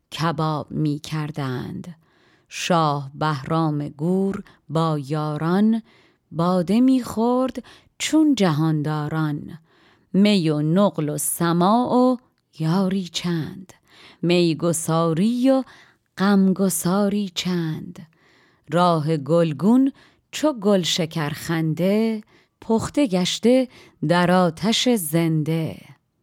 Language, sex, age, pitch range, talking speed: Persian, female, 30-49, 160-205 Hz, 80 wpm